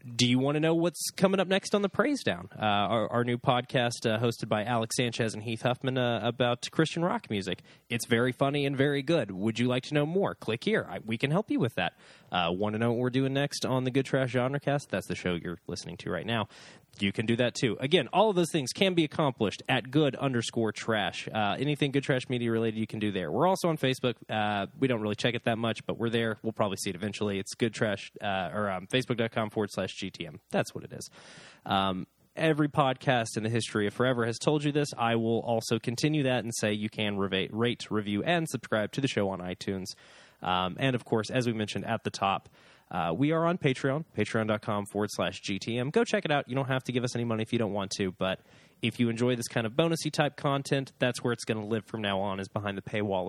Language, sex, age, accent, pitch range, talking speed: English, male, 20-39, American, 105-140 Hz, 250 wpm